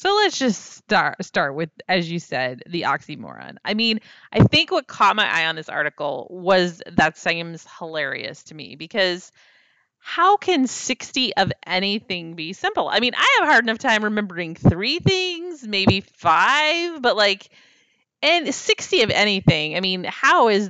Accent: American